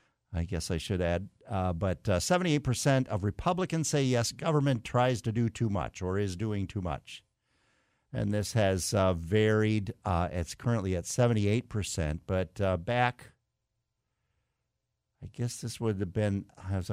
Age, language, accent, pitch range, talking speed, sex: 50-69, English, American, 85-115 Hz, 165 wpm, male